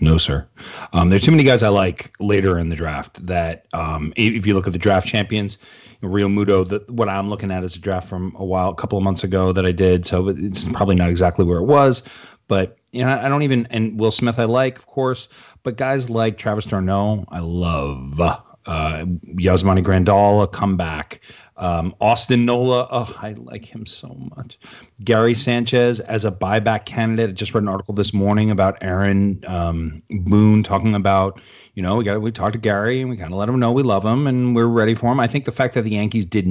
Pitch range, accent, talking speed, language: 90-115 Hz, American, 220 wpm, English